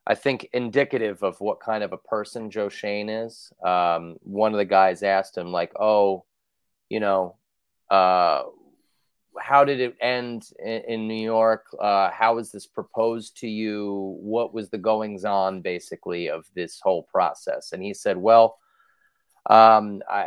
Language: English